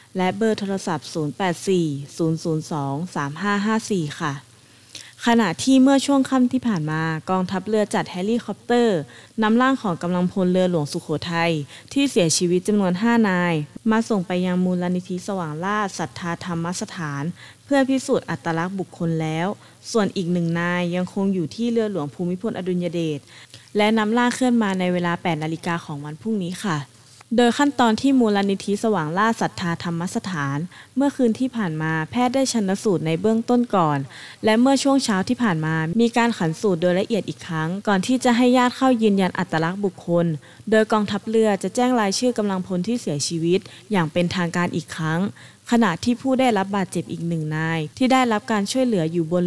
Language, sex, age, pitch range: Thai, female, 20-39, 165-220 Hz